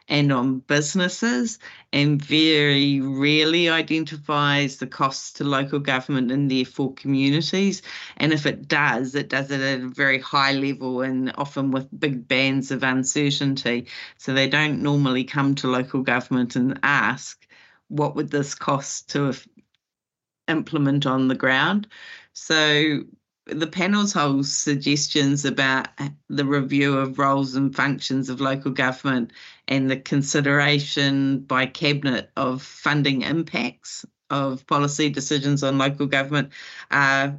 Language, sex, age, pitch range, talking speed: English, female, 30-49, 135-150 Hz, 135 wpm